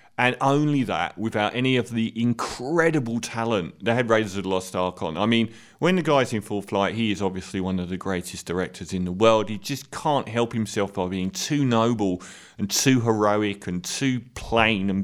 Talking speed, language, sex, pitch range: 210 wpm, English, male, 100-125 Hz